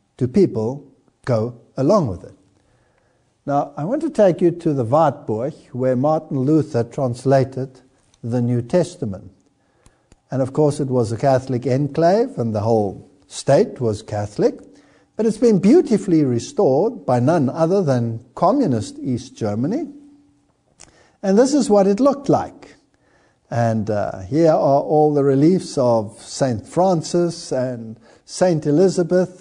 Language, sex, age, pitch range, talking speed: English, male, 60-79, 120-180 Hz, 140 wpm